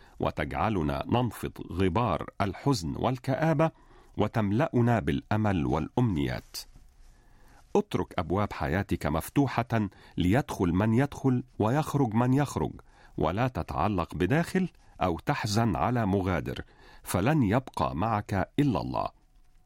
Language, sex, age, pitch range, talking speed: Arabic, male, 50-69, 95-135 Hz, 90 wpm